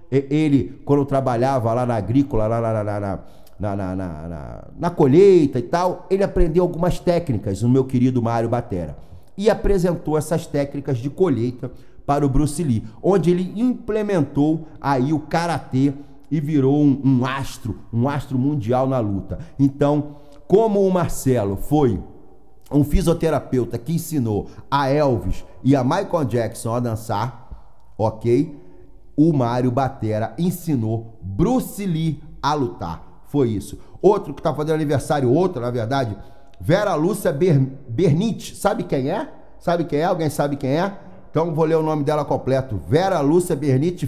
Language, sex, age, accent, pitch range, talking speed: Portuguese, male, 40-59, Brazilian, 120-165 Hz, 155 wpm